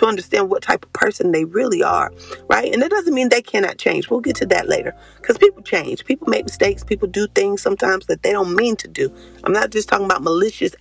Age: 30-49